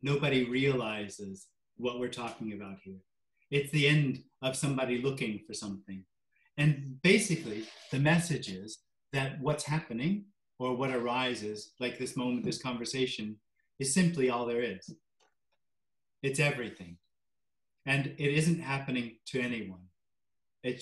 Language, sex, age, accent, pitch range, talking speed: English, male, 30-49, American, 105-135 Hz, 130 wpm